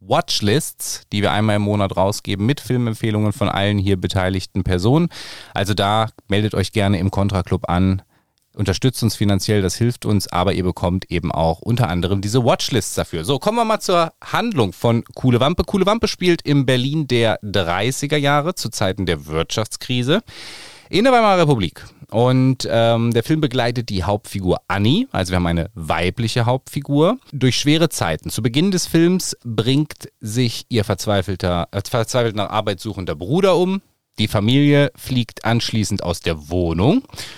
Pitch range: 100-135 Hz